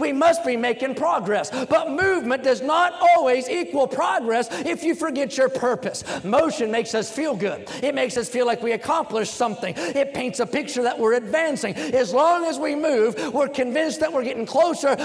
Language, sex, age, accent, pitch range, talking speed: English, male, 40-59, American, 255-320 Hz, 190 wpm